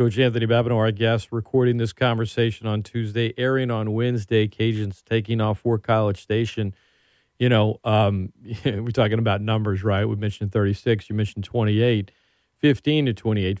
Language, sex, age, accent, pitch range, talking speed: English, male, 40-59, American, 110-130 Hz, 160 wpm